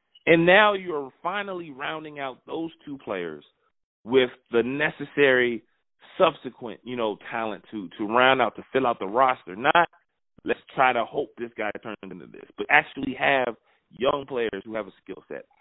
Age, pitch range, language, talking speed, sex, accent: 30-49, 115-175 Hz, English, 175 wpm, male, American